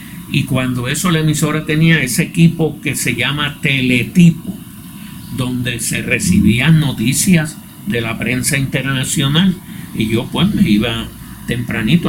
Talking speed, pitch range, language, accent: 130 wpm, 115-155 Hz, Spanish, American